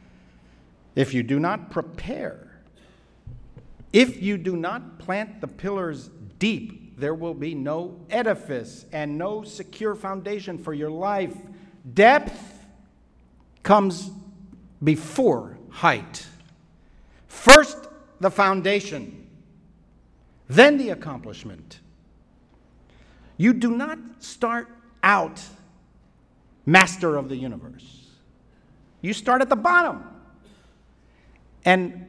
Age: 50-69